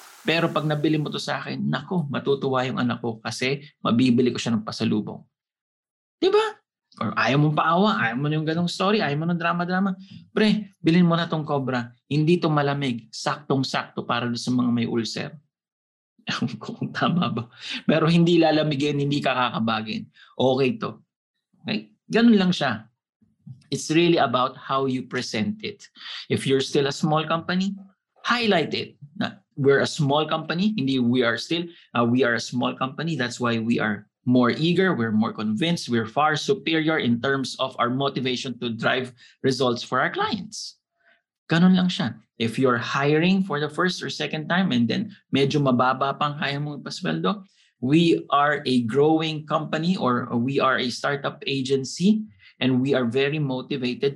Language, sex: English, male